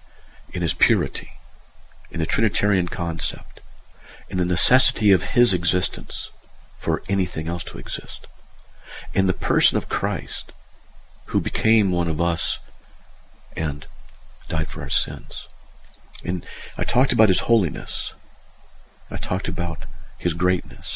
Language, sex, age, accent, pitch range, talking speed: English, male, 50-69, American, 80-105 Hz, 125 wpm